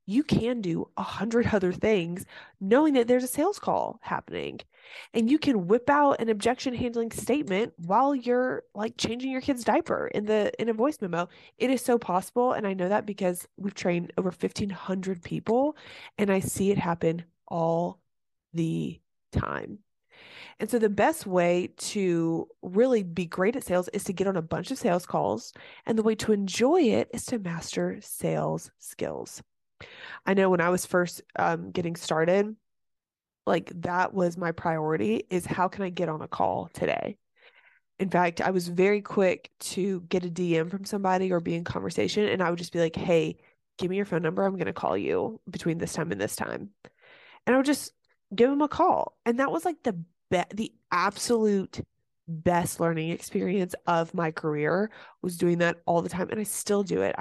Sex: female